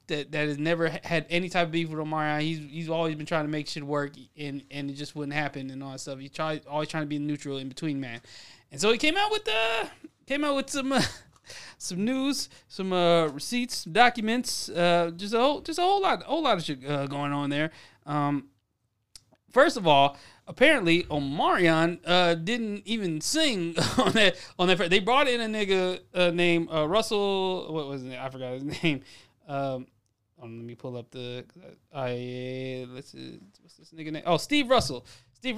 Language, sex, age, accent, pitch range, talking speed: English, male, 30-49, American, 145-200 Hz, 205 wpm